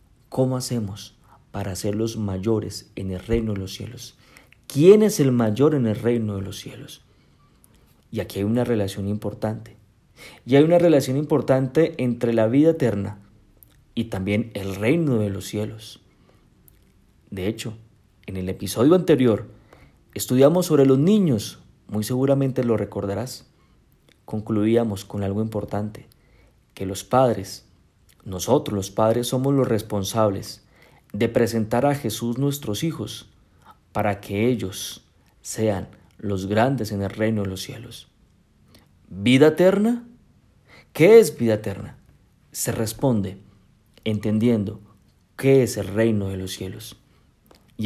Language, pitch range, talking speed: Spanish, 100-130 Hz, 135 wpm